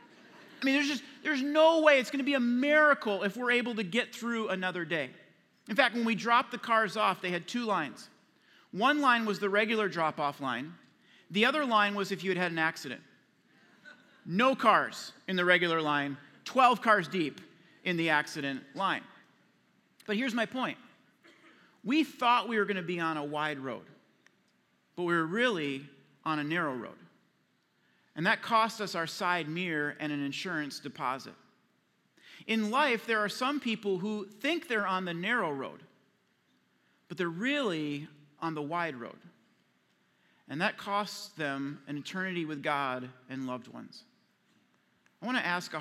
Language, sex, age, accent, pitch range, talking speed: English, male, 40-59, American, 155-240 Hz, 175 wpm